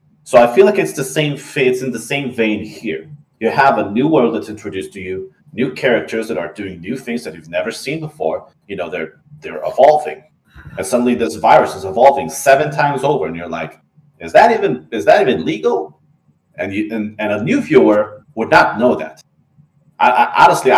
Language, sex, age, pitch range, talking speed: English, male, 30-49, 95-150 Hz, 210 wpm